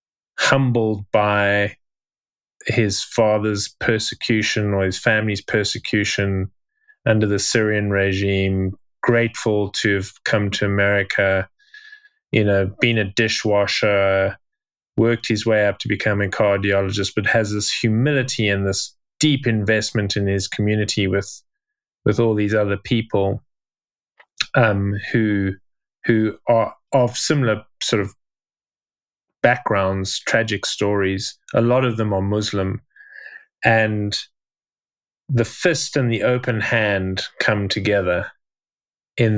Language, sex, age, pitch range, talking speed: English, male, 20-39, 100-115 Hz, 115 wpm